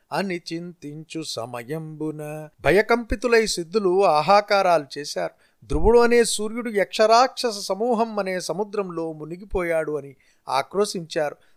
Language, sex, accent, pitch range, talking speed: Telugu, male, native, 170-200 Hz, 90 wpm